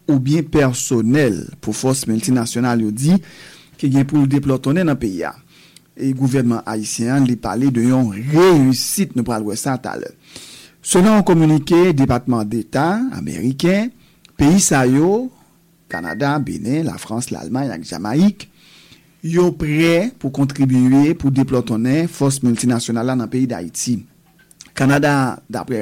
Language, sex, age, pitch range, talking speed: English, male, 50-69, 120-160 Hz, 125 wpm